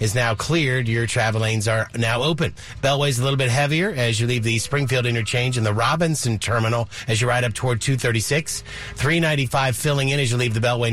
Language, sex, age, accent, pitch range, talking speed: English, male, 40-59, American, 115-140 Hz, 210 wpm